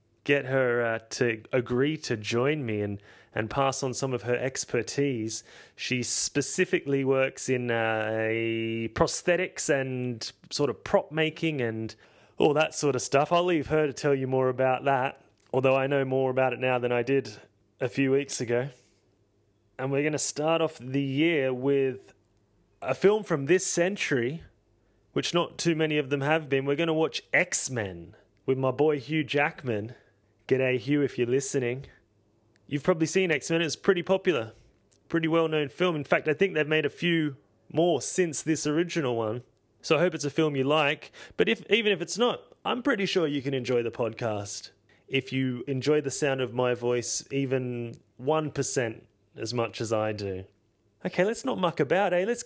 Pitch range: 115-160 Hz